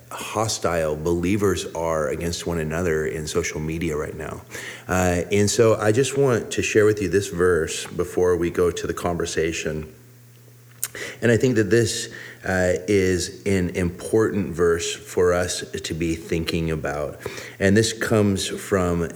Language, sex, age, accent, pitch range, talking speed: English, male, 30-49, American, 75-100 Hz, 155 wpm